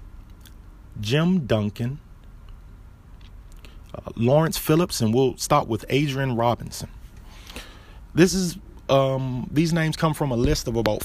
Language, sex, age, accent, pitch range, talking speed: English, male, 30-49, American, 105-130 Hz, 120 wpm